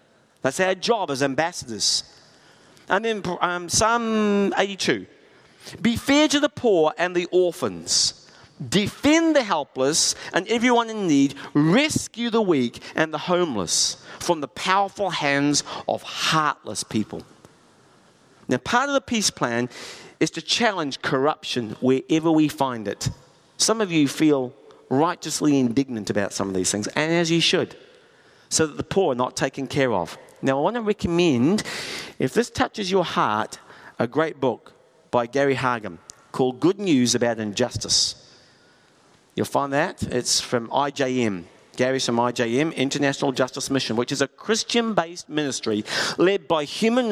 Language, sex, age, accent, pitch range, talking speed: English, male, 50-69, British, 130-190 Hz, 150 wpm